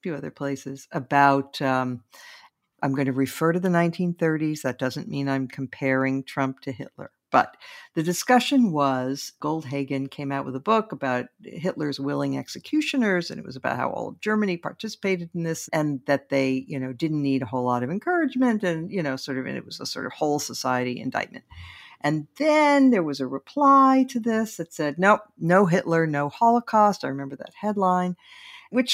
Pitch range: 135-210 Hz